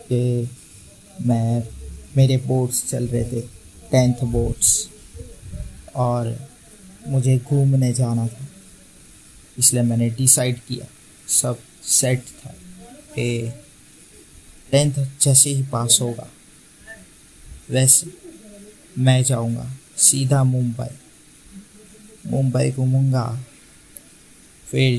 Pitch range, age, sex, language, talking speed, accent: 120-135 Hz, 20-39, male, Hindi, 80 wpm, native